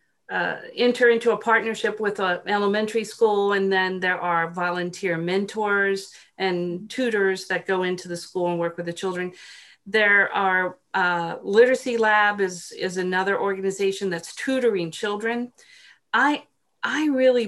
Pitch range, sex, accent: 180-220 Hz, female, American